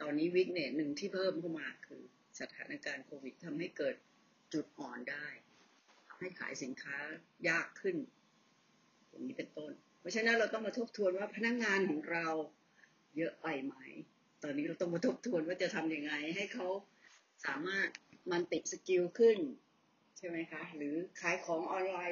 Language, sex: Thai, female